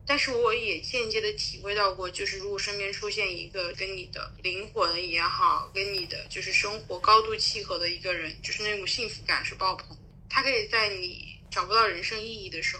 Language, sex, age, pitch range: Chinese, female, 20-39, 170-225 Hz